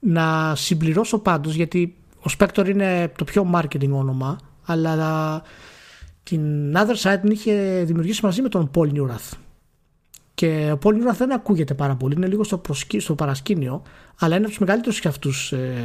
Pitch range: 150-210 Hz